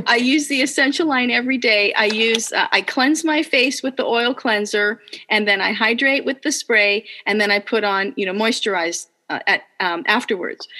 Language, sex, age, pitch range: English, female, 40-59, 200-270 Hz